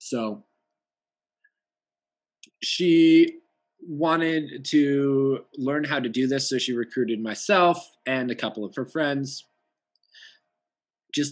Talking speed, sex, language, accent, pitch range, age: 105 wpm, male, English, American, 90-135 Hz, 20-39